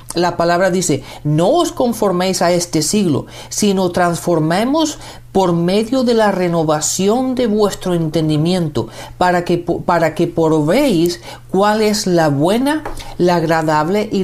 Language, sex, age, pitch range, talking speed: Spanish, male, 40-59, 160-205 Hz, 125 wpm